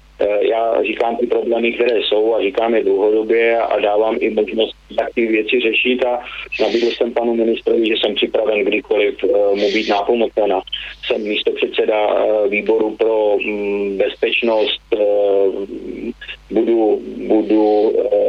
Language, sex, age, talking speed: Slovak, male, 30-49, 125 wpm